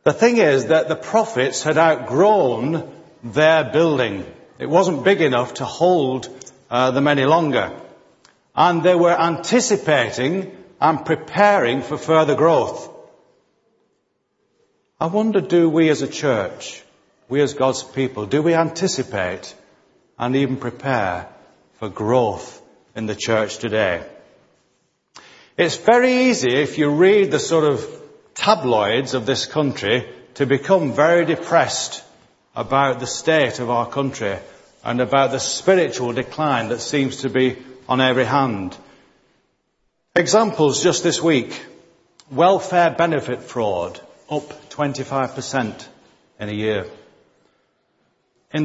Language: English